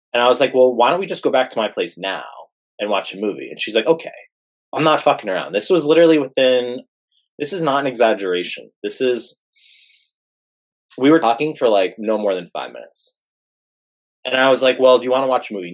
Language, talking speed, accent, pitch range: English, 235 wpm, American, 110-170 Hz